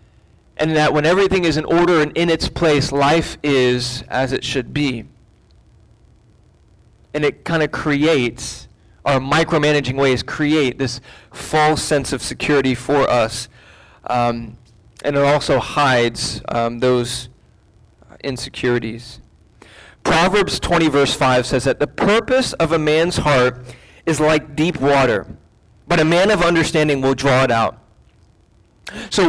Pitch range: 125-165 Hz